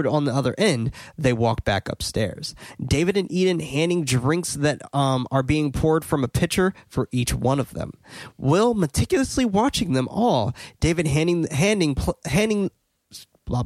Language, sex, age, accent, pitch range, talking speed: English, male, 20-39, American, 125-165 Hz, 160 wpm